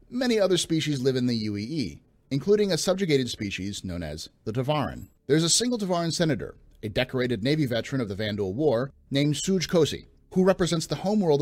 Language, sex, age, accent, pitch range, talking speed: English, male, 30-49, American, 105-155 Hz, 185 wpm